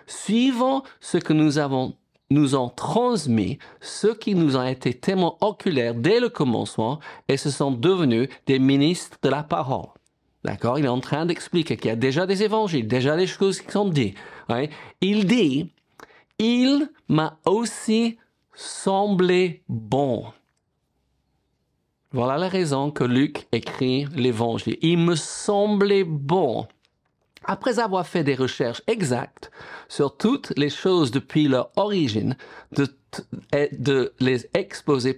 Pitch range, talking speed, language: 130-185 Hz, 150 wpm, French